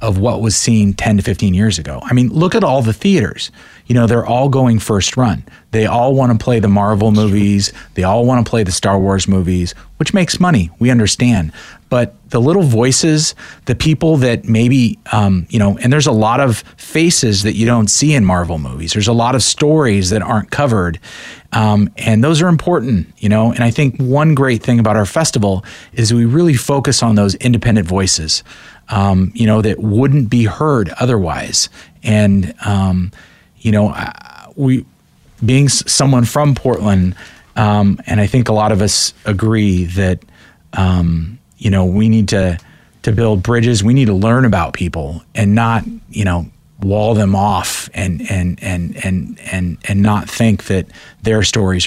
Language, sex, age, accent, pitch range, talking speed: English, male, 30-49, American, 95-120 Hz, 185 wpm